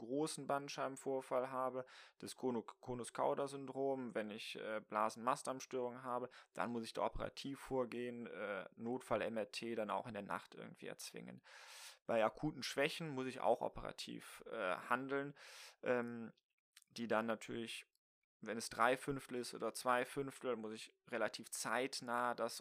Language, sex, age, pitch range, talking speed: German, male, 20-39, 115-140 Hz, 130 wpm